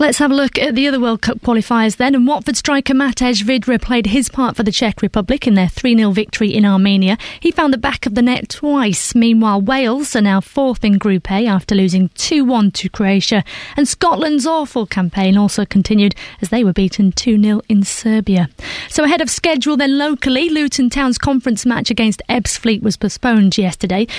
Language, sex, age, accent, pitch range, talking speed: English, female, 30-49, British, 210-280 Hz, 195 wpm